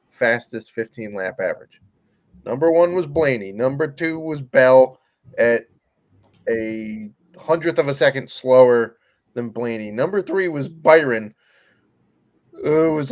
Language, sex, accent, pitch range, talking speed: English, male, American, 120-160 Hz, 125 wpm